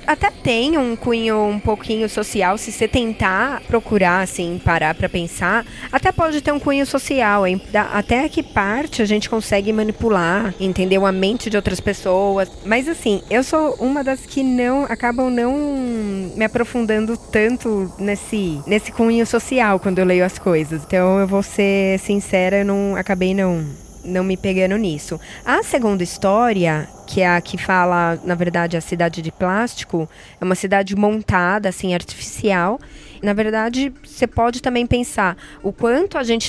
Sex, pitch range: female, 185-235 Hz